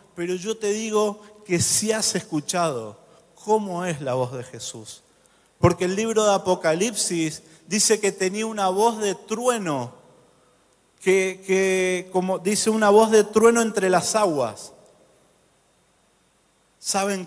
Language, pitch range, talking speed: Spanish, 185-230 Hz, 130 wpm